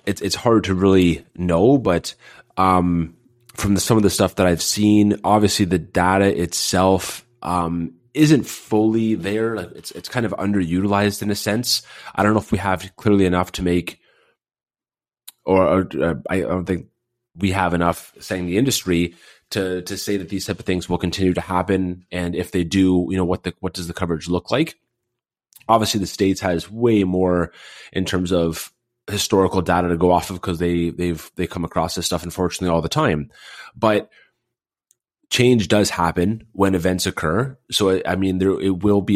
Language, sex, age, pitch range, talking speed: English, male, 20-39, 90-105 Hz, 190 wpm